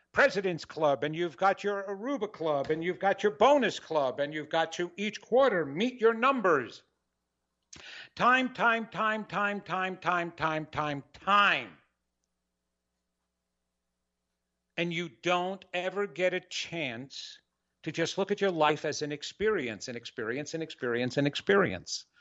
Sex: male